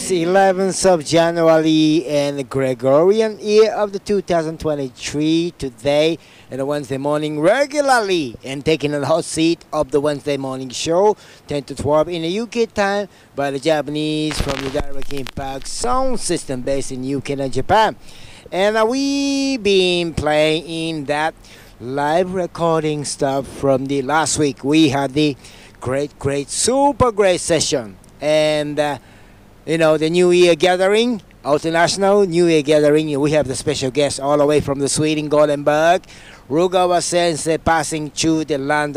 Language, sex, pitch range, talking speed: English, male, 140-175 Hz, 150 wpm